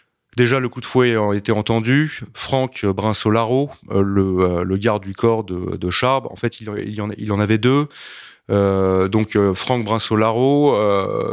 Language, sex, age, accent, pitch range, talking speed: French, male, 30-49, French, 100-125 Hz, 165 wpm